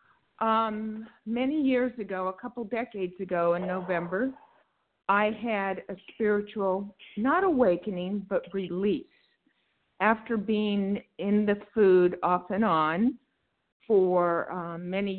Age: 50-69